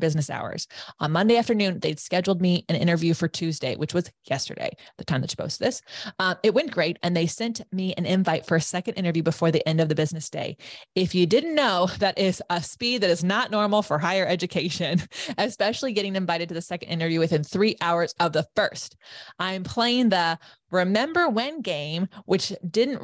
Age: 20-39